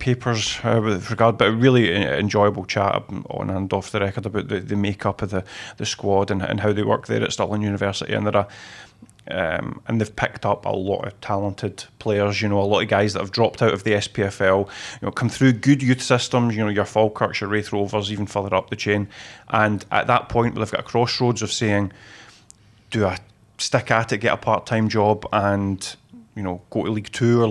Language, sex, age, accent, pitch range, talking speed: English, male, 30-49, British, 105-120 Hz, 230 wpm